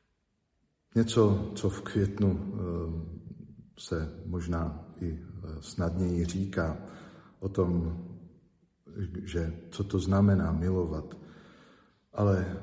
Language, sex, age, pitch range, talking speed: Slovak, male, 50-69, 85-100 Hz, 75 wpm